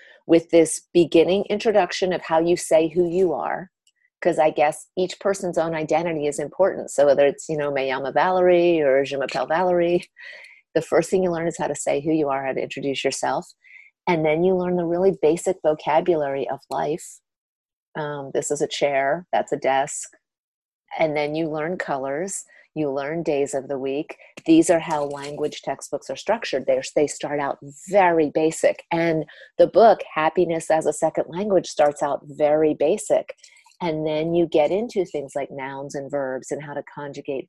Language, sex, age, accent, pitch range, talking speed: English, female, 40-59, American, 145-180 Hz, 180 wpm